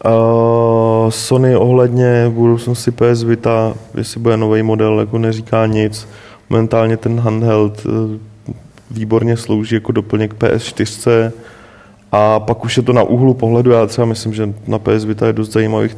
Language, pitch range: Czech, 110-115 Hz